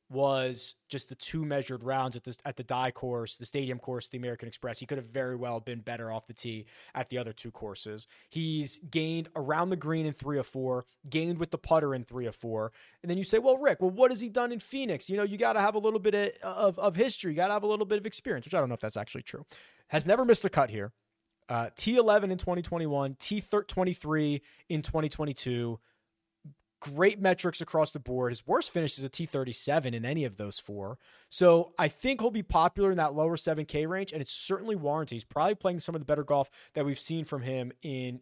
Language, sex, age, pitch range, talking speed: English, male, 20-39, 130-175 Hz, 235 wpm